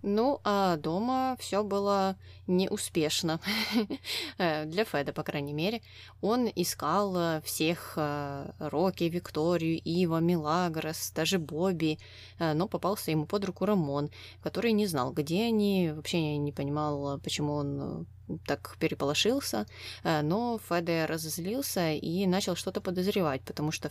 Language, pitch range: Russian, 150-185 Hz